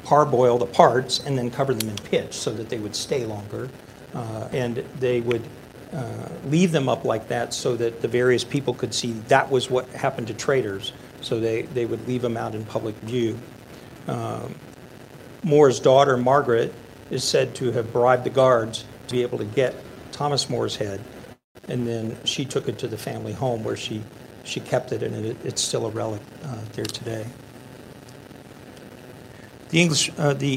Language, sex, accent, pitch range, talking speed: English, male, American, 120-145 Hz, 175 wpm